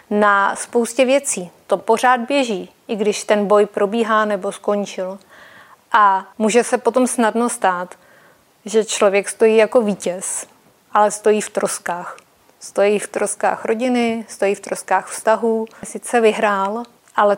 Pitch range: 205-240 Hz